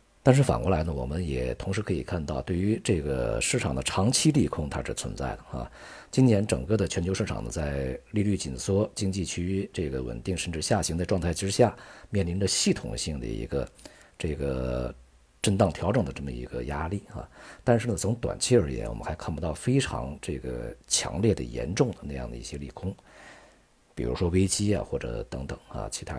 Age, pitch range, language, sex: 50-69, 70-100 Hz, Chinese, male